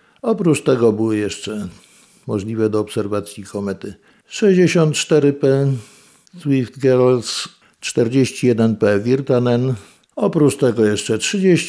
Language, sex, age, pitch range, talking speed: Polish, male, 50-69, 110-140 Hz, 80 wpm